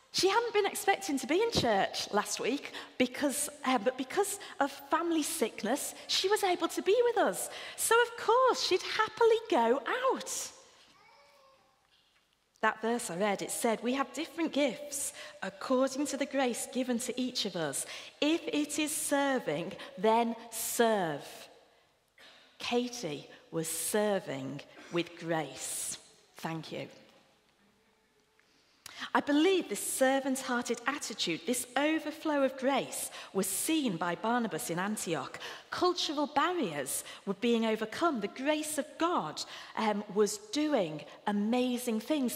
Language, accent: English, British